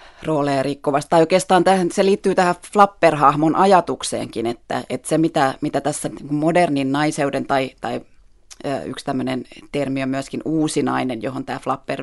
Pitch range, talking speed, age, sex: 135-160 Hz, 125 wpm, 30-49, female